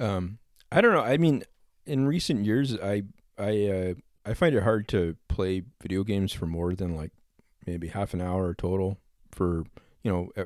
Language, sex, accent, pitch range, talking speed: English, male, American, 90-105 Hz, 185 wpm